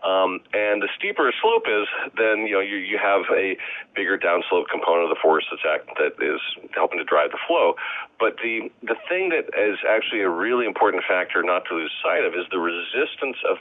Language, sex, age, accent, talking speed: English, male, 40-59, American, 210 wpm